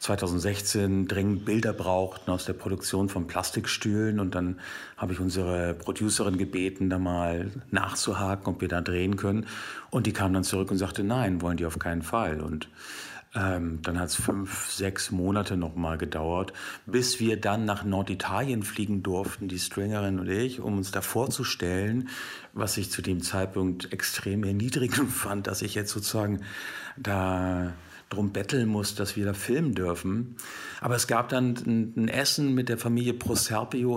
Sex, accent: male, German